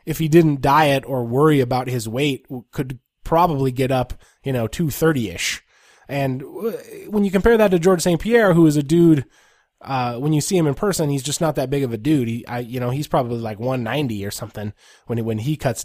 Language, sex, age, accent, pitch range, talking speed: English, male, 20-39, American, 125-155 Hz, 225 wpm